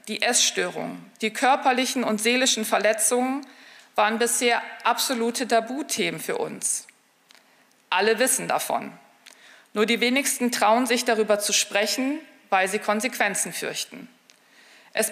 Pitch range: 210-245 Hz